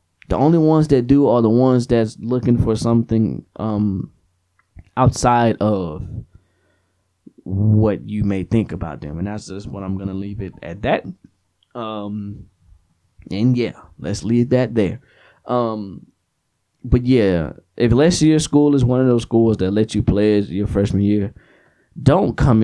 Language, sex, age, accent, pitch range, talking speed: English, male, 20-39, American, 95-115 Hz, 160 wpm